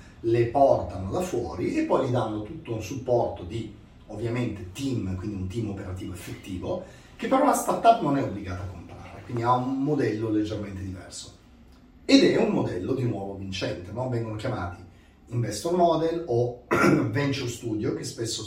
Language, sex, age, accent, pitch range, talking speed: Italian, male, 30-49, native, 90-120 Hz, 165 wpm